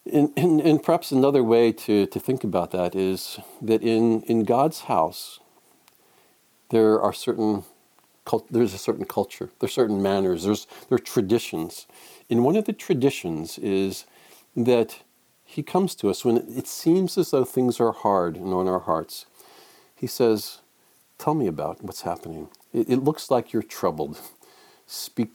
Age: 50-69